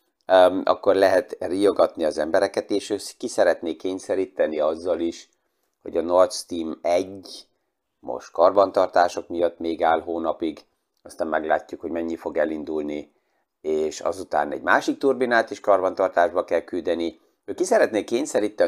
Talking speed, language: 135 wpm, Hungarian